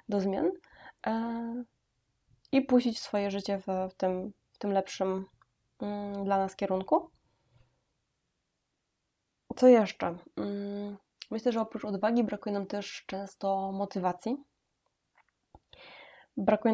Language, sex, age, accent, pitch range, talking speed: Polish, female, 20-39, native, 190-220 Hz, 90 wpm